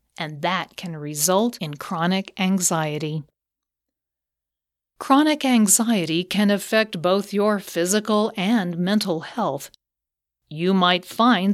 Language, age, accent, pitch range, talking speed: English, 40-59, American, 160-220 Hz, 105 wpm